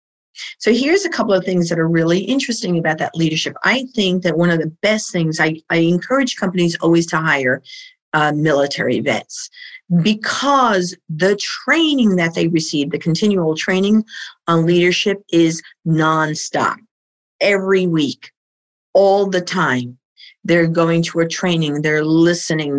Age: 50-69